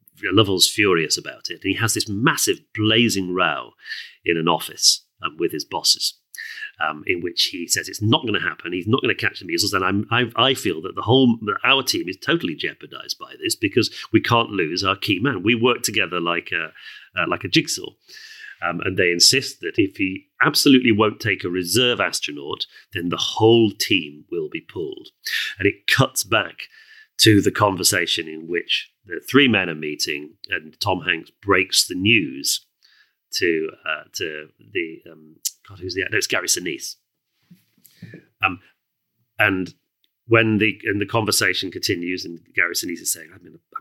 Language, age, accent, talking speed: English, 40-59, British, 185 wpm